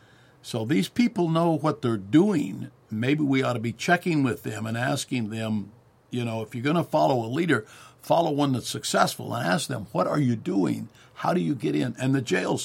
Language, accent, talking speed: English, American, 220 wpm